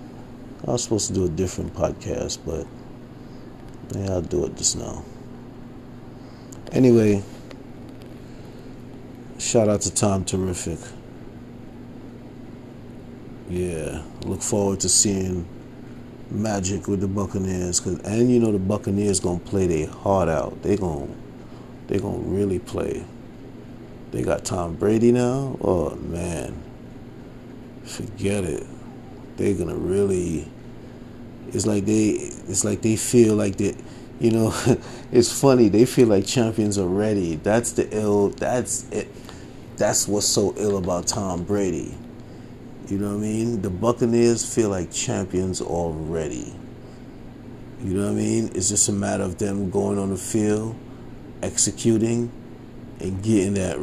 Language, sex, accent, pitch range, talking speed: English, male, American, 95-120 Hz, 135 wpm